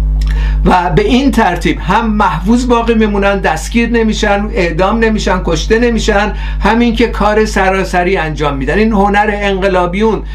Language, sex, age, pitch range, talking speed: Persian, male, 60-79, 180-220 Hz, 135 wpm